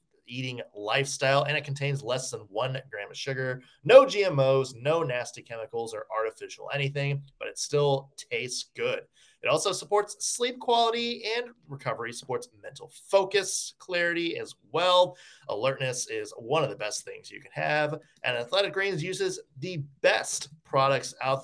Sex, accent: male, American